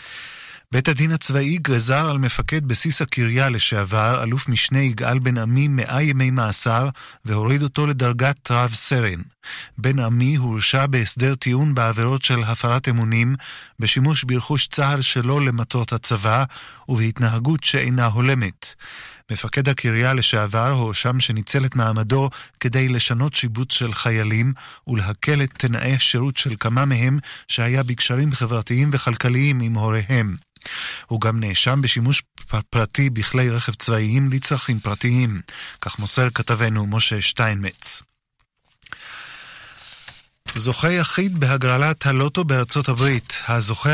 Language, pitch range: Hebrew, 115-140 Hz